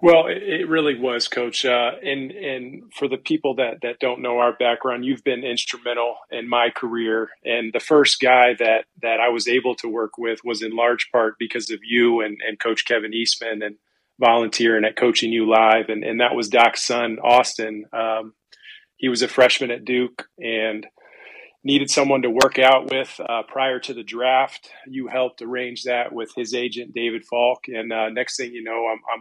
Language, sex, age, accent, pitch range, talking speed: English, male, 40-59, American, 115-130 Hz, 195 wpm